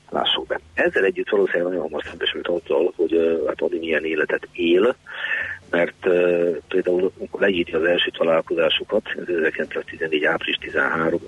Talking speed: 140 wpm